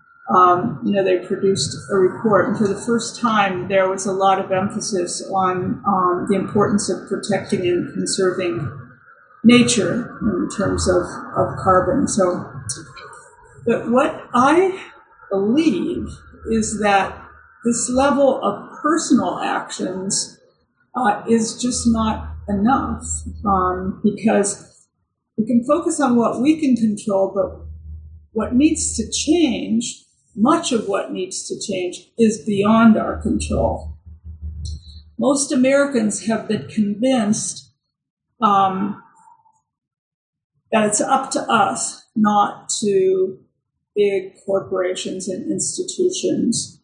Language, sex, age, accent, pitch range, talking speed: English, female, 50-69, American, 190-250 Hz, 115 wpm